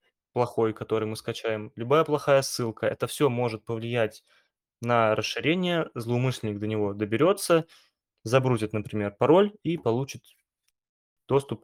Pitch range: 110-130 Hz